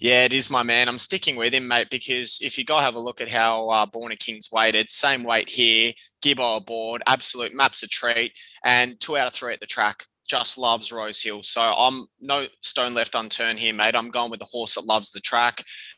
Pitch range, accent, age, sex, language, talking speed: 110-130 Hz, Australian, 20-39, male, English, 235 wpm